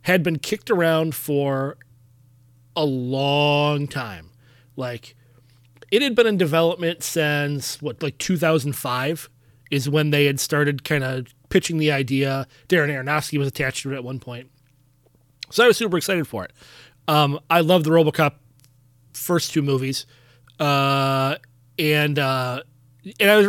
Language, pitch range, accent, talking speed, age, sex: English, 125-170 Hz, American, 150 wpm, 30-49, male